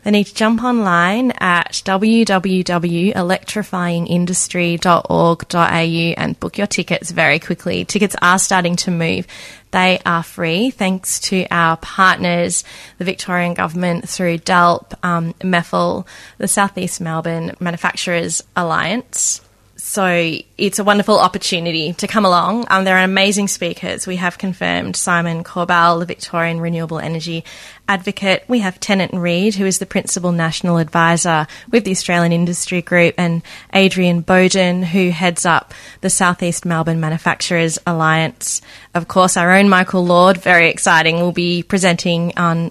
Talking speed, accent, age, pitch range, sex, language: 140 wpm, Australian, 20-39, 170-190 Hz, female, English